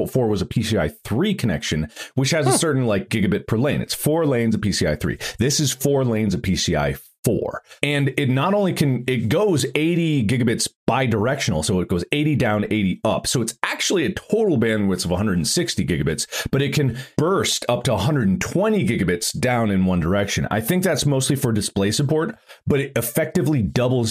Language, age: English, 30-49